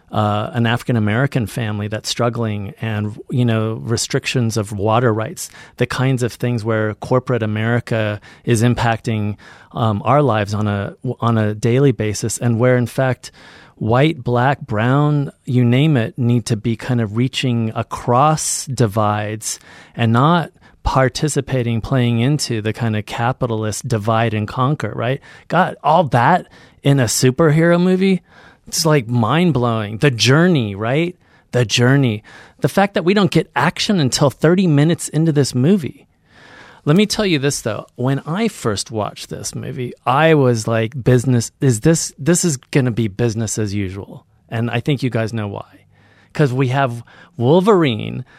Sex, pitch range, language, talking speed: male, 115-140 Hz, English, 155 wpm